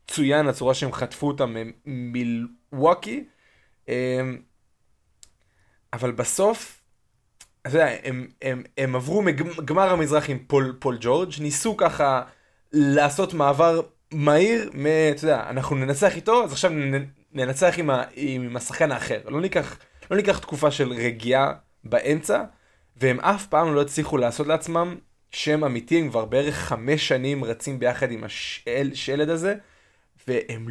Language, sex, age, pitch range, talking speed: Hebrew, male, 20-39, 120-155 Hz, 140 wpm